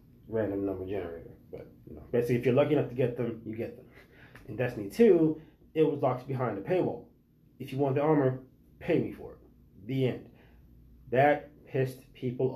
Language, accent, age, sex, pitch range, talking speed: English, American, 30-49, male, 110-130 Hz, 190 wpm